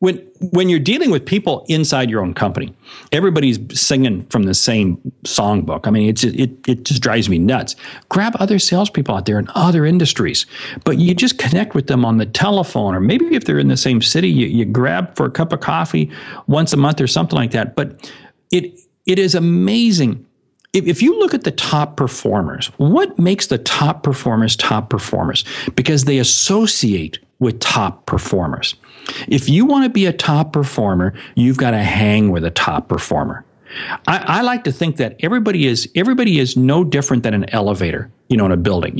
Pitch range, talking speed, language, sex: 115-180 Hz, 195 wpm, English, male